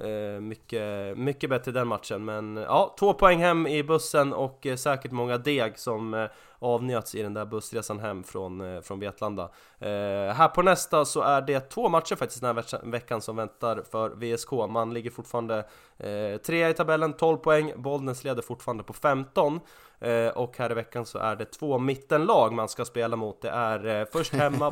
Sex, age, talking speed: male, 20-39, 195 wpm